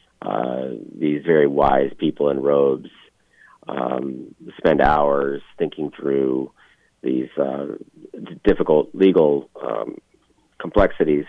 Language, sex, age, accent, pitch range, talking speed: English, male, 40-59, American, 70-90 Hz, 95 wpm